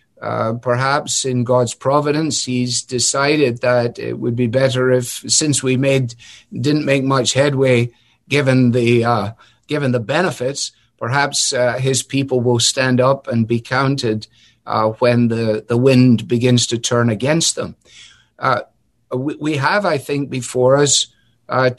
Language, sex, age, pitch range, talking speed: English, male, 50-69, 120-135 Hz, 150 wpm